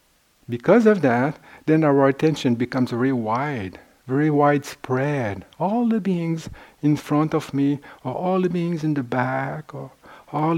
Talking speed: 155 wpm